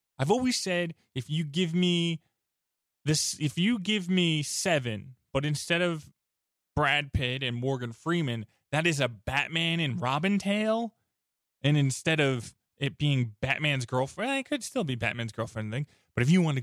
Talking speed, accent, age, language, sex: 170 wpm, American, 20-39, English, male